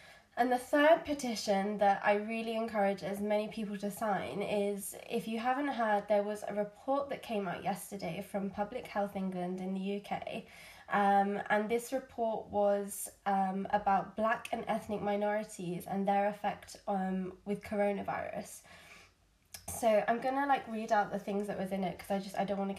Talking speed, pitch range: 185 wpm, 195-220 Hz